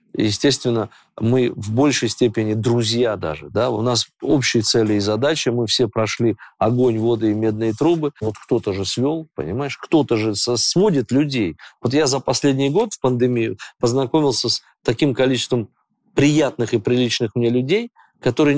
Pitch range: 115-140 Hz